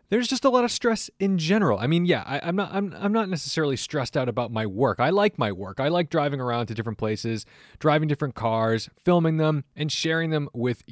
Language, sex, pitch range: English, male, 105-145 Hz